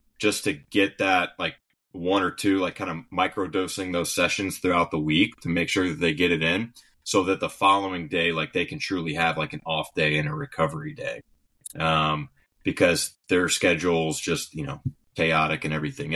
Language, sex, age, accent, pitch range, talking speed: English, male, 30-49, American, 75-90 Hz, 195 wpm